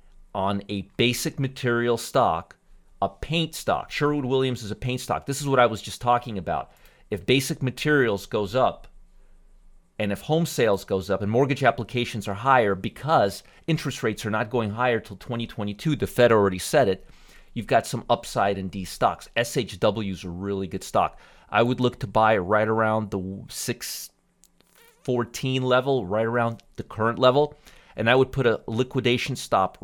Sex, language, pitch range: male, English, 100-125 Hz